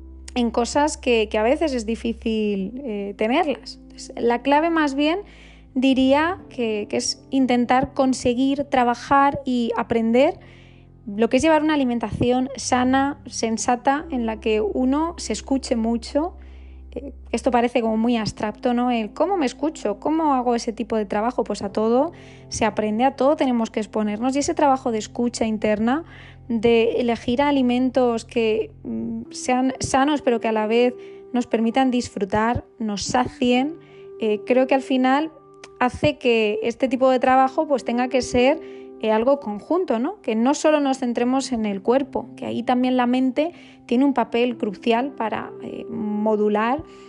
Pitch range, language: 220-270 Hz, Spanish